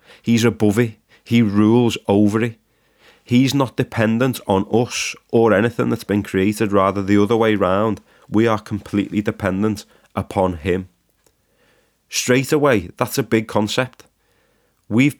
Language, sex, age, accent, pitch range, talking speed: English, male, 30-49, British, 100-120 Hz, 140 wpm